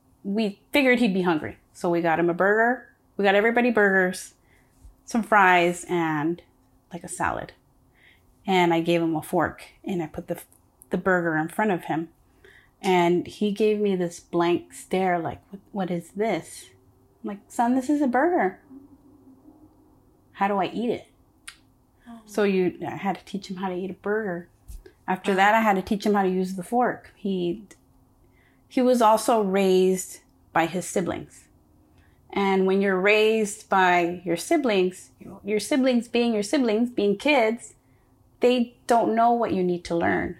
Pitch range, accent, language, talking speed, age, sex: 175-215 Hz, American, English, 170 wpm, 30-49, female